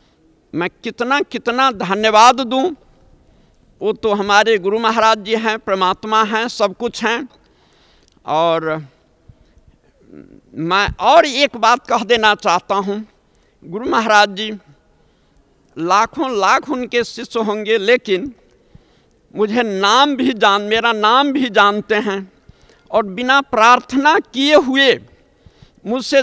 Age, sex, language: 50-69, male, Hindi